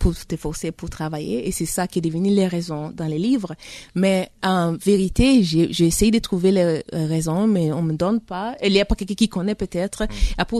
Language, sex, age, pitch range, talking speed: French, female, 30-49, 170-215 Hz, 220 wpm